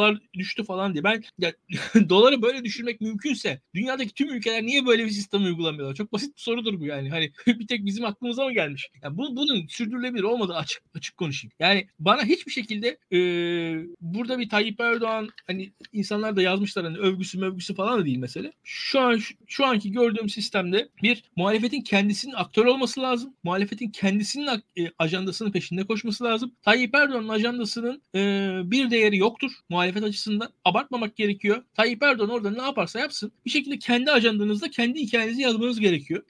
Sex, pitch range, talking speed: male, 185-240 Hz, 170 wpm